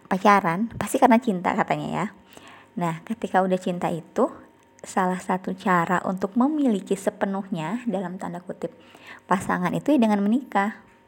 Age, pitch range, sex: 20-39, 185-230 Hz, male